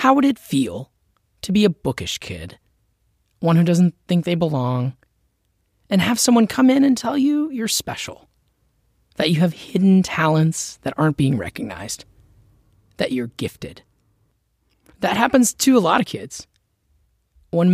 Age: 30-49